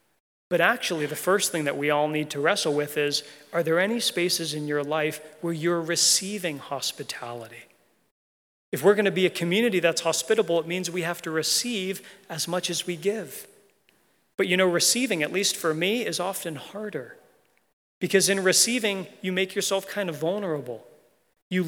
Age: 30-49